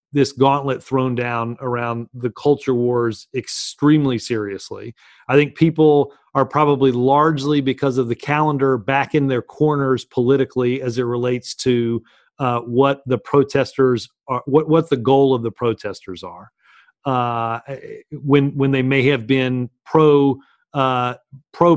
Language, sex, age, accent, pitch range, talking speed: English, male, 40-59, American, 130-150 Hz, 145 wpm